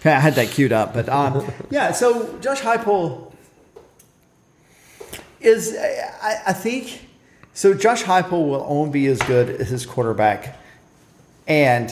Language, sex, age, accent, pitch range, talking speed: English, male, 40-59, American, 115-150 Hz, 135 wpm